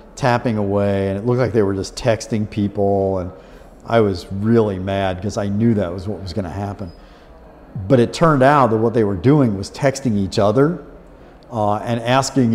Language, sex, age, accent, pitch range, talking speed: Czech, male, 50-69, American, 100-125 Hz, 200 wpm